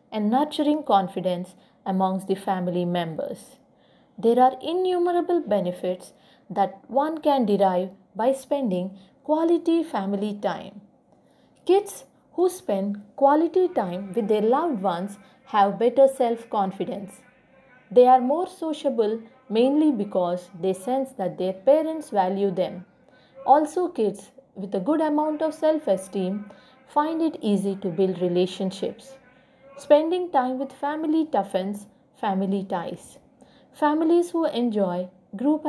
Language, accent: English, Indian